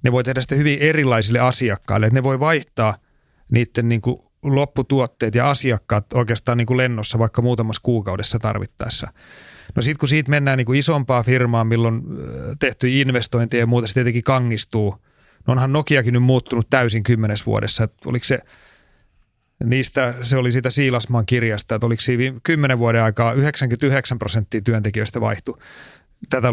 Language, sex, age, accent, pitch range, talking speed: Finnish, male, 30-49, native, 115-130 Hz, 150 wpm